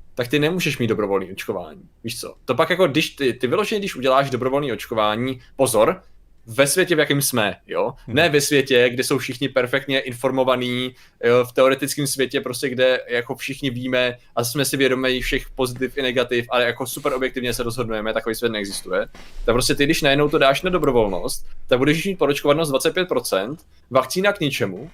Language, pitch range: Czech, 120-140 Hz